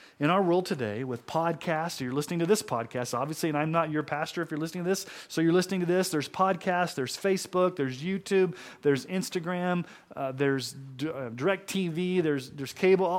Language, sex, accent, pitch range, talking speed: English, male, American, 125-170 Hz, 195 wpm